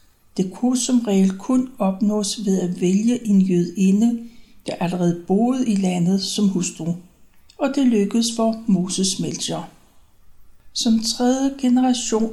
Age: 60-79